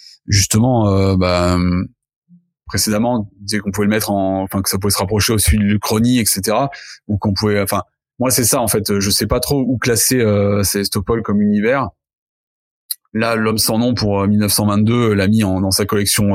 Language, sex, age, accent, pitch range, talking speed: French, male, 30-49, French, 95-110 Hz, 185 wpm